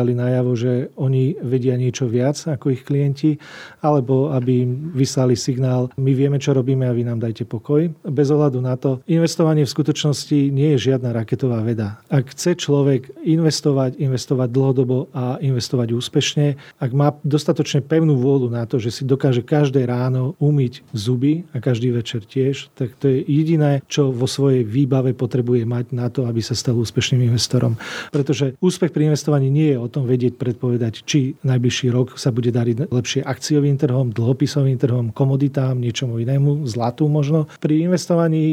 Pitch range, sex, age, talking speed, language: 125-145 Hz, male, 40-59, 170 wpm, Slovak